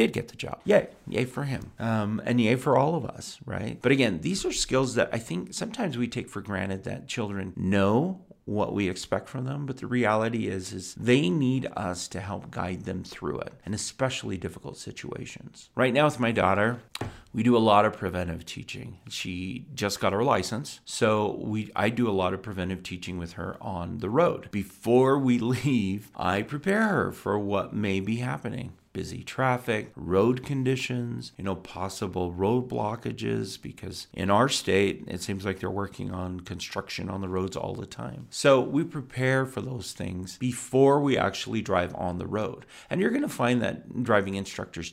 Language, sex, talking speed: English, male, 190 wpm